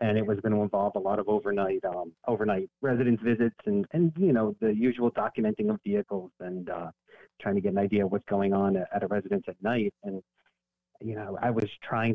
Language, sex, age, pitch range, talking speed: English, male, 30-49, 95-120 Hz, 220 wpm